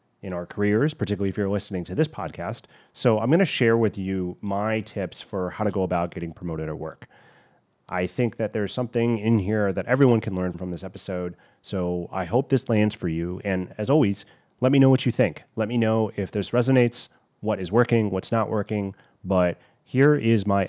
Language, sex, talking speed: English, male, 215 wpm